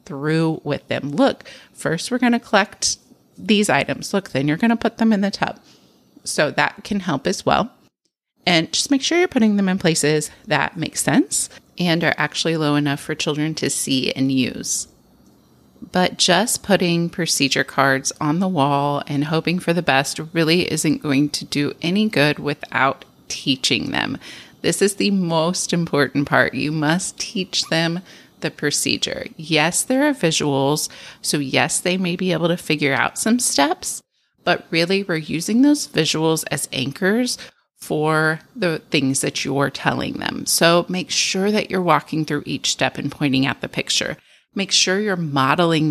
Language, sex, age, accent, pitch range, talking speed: English, female, 30-49, American, 145-185 Hz, 175 wpm